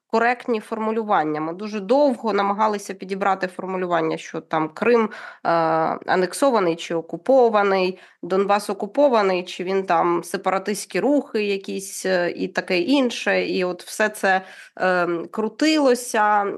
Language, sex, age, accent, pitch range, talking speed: Ukrainian, female, 20-39, native, 185-240 Hz, 110 wpm